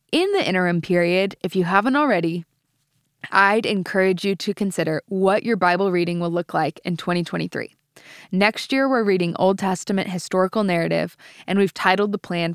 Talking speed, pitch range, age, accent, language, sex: 165 wpm, 180-210 Hz, 20-39, American, English, female